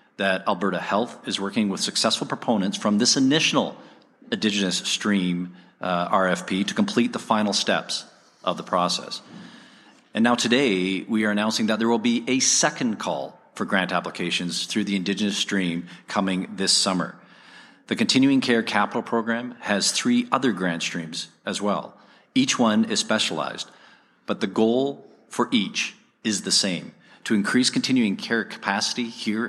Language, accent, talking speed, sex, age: English, American, 155 wpm, male, 40-59